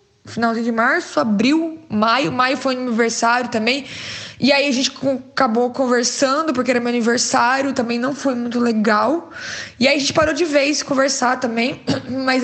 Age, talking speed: 20-39, 165 wpm